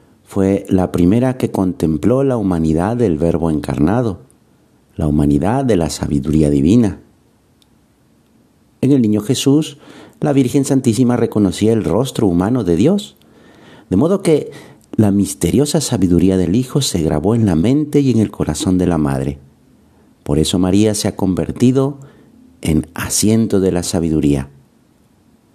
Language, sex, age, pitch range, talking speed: Spanish, male, 50-69, 85-115 Hz, 140 wpm